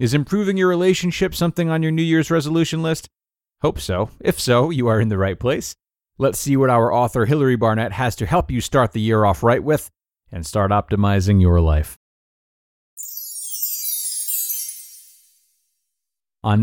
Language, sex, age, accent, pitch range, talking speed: English, male, 30-49, American, 100-145 Hz, 160 wpm